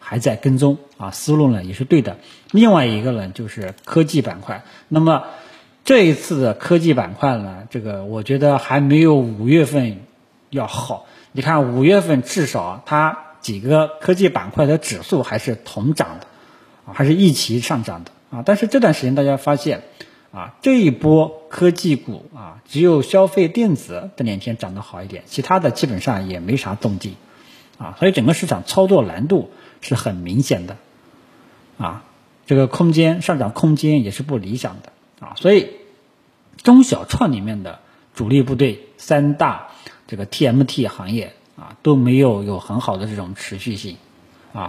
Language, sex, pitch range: Chinese, male, 110-155 Hz